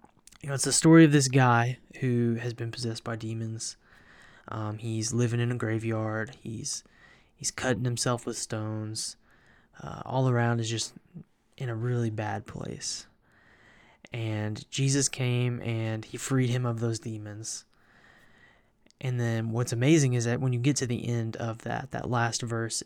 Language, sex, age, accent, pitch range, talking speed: English, male, 20-39, American, 110-125 Hz, 165 wpm